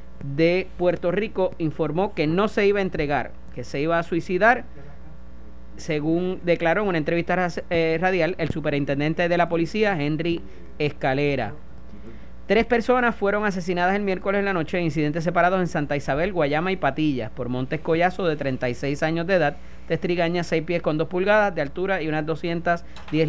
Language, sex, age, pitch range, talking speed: Spanish, male, 30-49, 140-170 Hz, 175 wpm